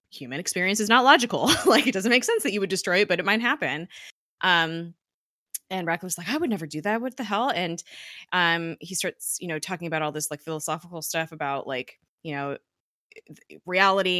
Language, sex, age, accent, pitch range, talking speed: English, female, 20-39, American, 160-210 Hz, 210 wpm